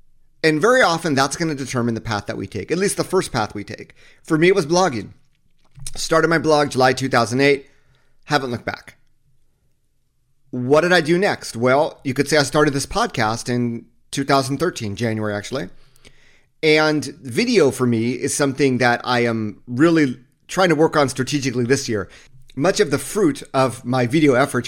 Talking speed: 175 wpm